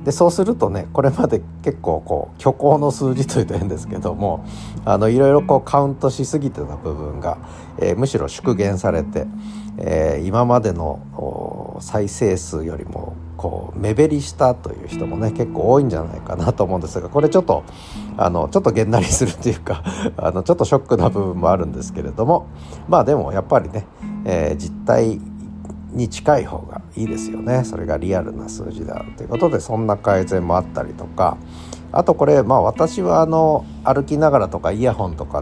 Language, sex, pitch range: Japanese, male, 85-135 Hz